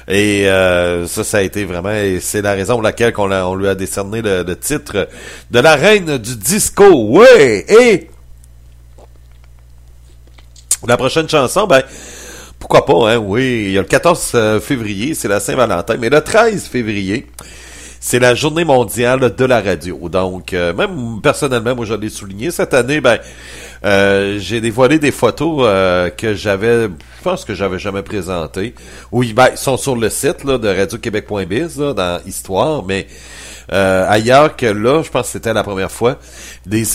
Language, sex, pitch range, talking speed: English, male, 90-120 Hz, 170 wpm